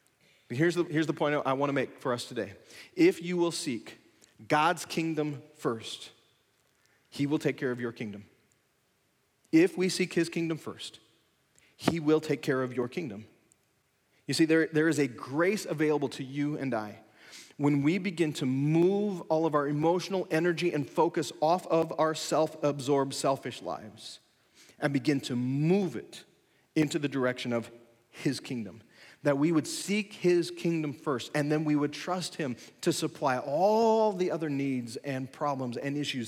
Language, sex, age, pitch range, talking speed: English, male, 40-59, 140-185 Hz, 170 wpm